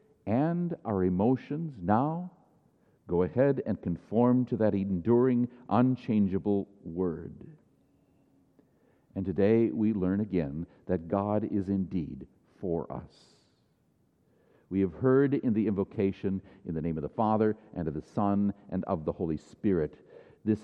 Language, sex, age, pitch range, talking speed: English, male, 60-79, 100-150 Hz, 135 wpm